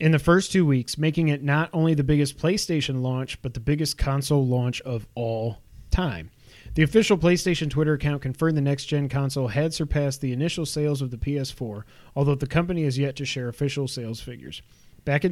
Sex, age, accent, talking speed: male, 30-49, American, 195 wpm